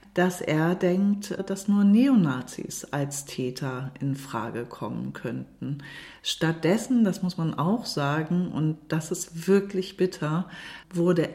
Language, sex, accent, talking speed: German, female, German, 125 wpm